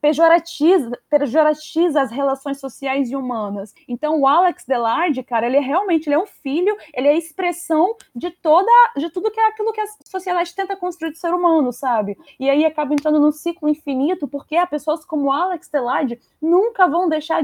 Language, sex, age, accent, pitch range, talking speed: Portuguese, female, 10-29, Brazilian, 270-330 Hz, 195 wpm